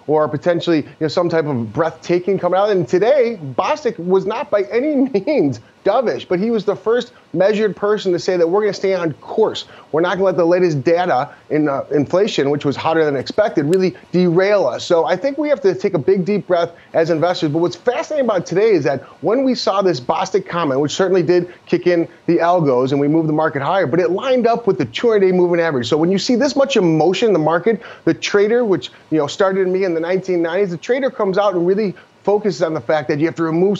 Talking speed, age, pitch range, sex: 240 wpm, 30-49, 165-215 Hz, male